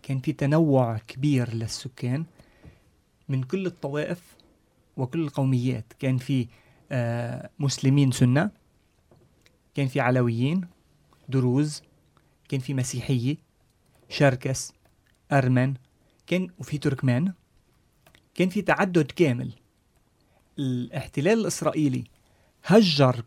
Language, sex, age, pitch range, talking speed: Turkish, male, 30-49, 125-150 Hz, 85 wpm